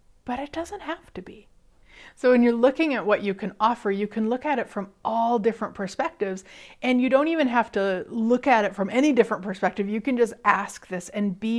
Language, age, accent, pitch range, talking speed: English, 30-49, American, 195-245 Hz, 230 wpm